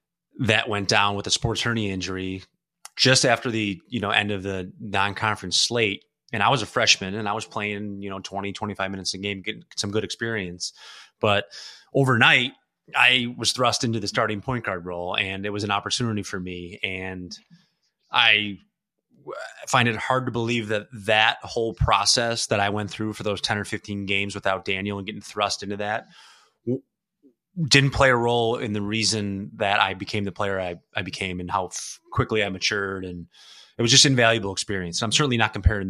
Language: English